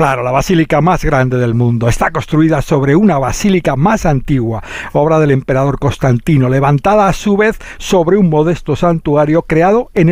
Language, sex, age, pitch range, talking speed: Spanish, male, 60-79, 130-180 Hz, 165 wpm